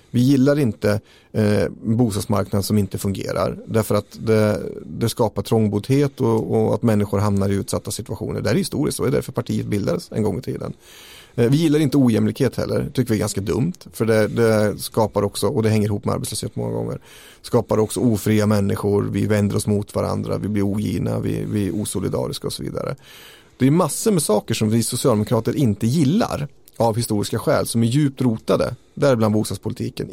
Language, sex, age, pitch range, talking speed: Swedish, male, 30-49, 105-130 Hz, 190 wpm